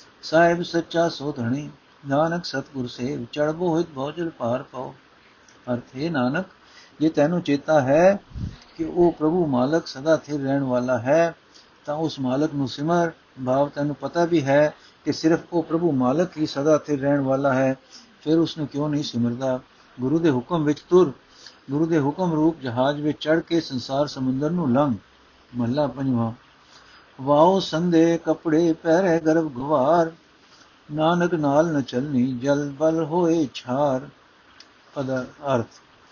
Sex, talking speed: male, 145 wpm